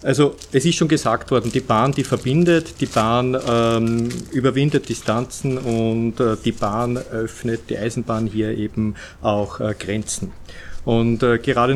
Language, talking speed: German, 155 wpm